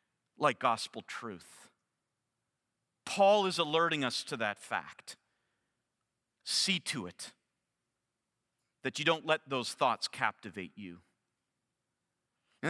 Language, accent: English, American